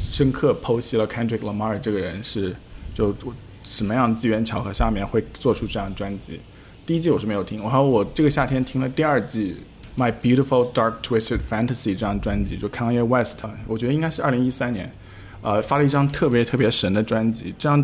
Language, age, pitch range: Chinese, 20-39, 105-130 Hz